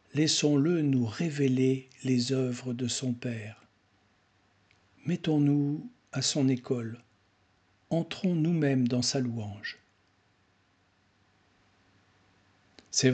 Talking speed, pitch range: 80 wpm, 105-150 Hz